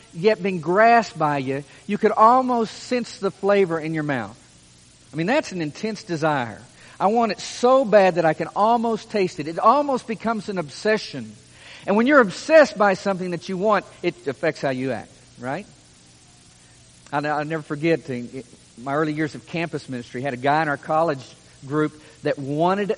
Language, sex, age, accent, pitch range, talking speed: English, male, 50-69, American, 140-205 Hz, 190 wpm